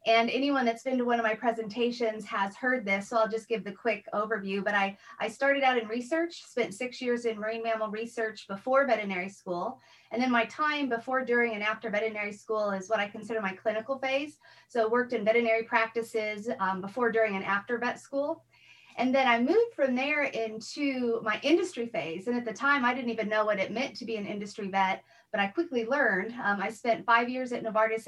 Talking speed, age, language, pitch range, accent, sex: 220 wpm, 40-59, English, 210-245 Hz, American, female